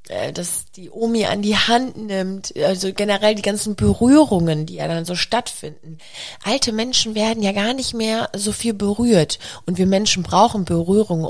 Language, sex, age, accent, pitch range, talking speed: German, female, 30-49, German, 170-225 Hz, 170 wpm